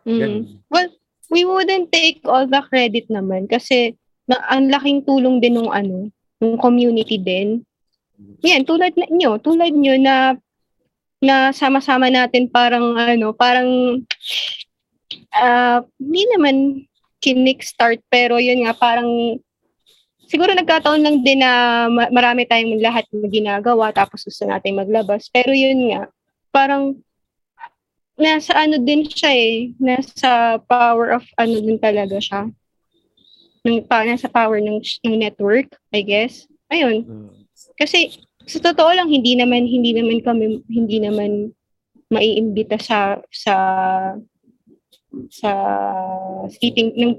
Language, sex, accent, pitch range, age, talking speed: Filipino, female, native, 220-265 Hz, 20-39, 120 wpm